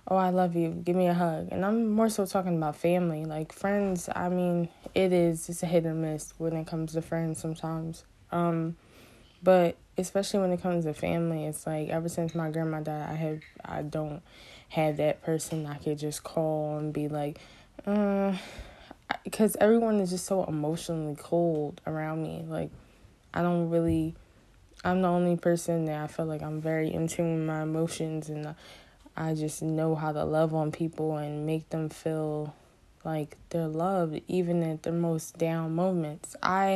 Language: English